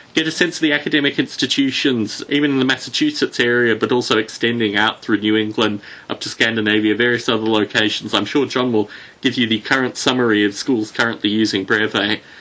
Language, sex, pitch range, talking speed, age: English, male, 110-140 Hz, 190 wpm, 30-49